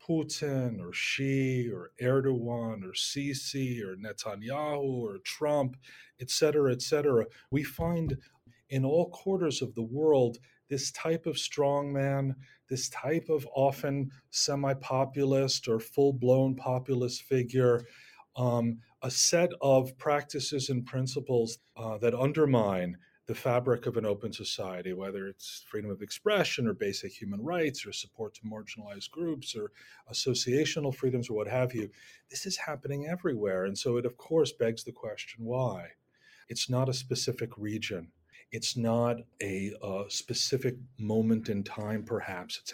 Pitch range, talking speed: 115-140 Hz, 140 wpm